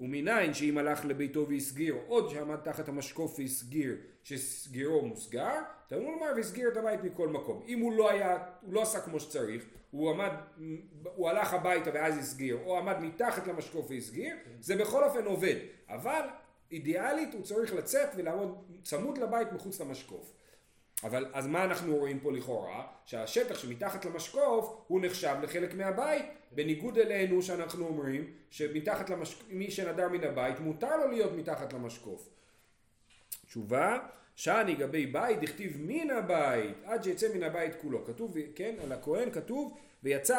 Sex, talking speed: male, 155 wpm